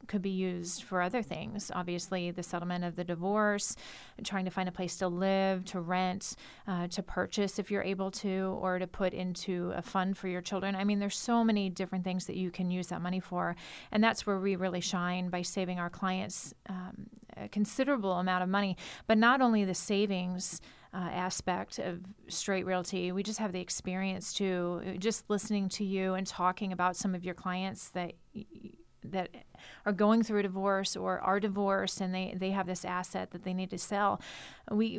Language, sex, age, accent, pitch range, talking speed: English, female, 30-49, American, 180-205 Hz, 200 wpm